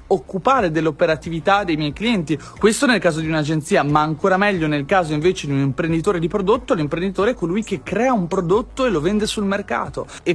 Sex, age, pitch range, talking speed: male, 30-49, 155-205 Hz, 195 wpm